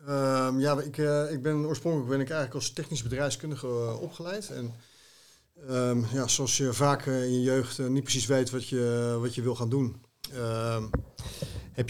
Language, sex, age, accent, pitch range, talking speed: Dutch, male, 50-69, Dutch, 120-145 Hz, 175 wpm